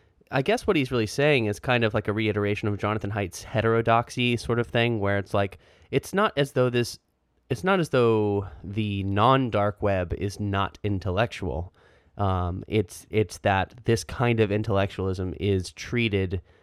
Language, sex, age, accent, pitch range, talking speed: English, male, 20-39, American, 90-110 Hz, 170 wpm